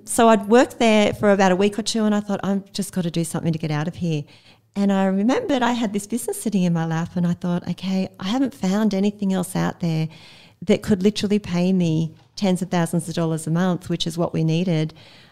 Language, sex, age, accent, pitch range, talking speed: English, female, 40-59, Australian, 165-200 Hz, 245 wpm